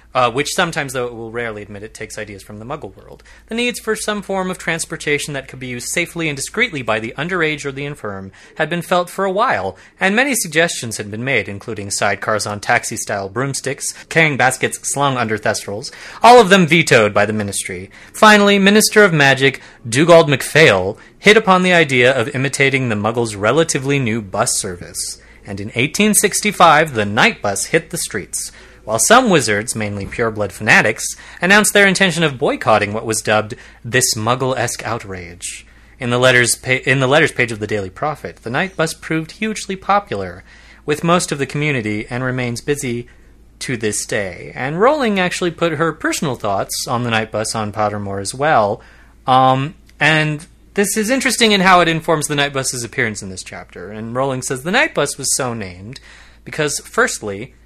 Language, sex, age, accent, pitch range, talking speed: English, male, 30-49, American, 110-165 Hz, 185 wpm